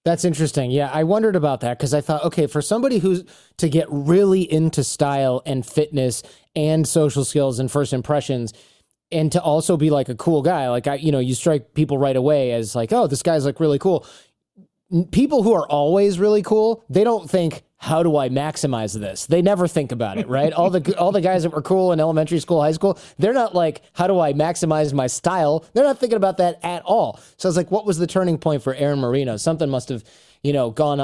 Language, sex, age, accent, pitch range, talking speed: English, male, 30-49, American, 130-170 Hz, 230 wpm